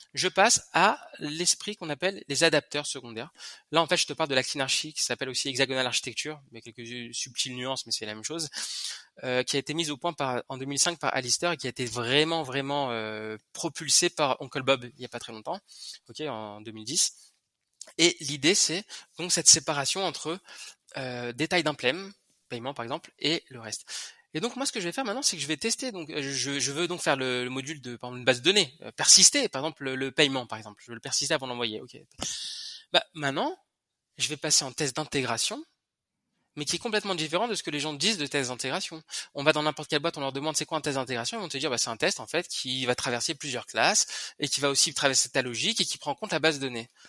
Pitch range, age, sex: 130-170 Hz, 20-39, male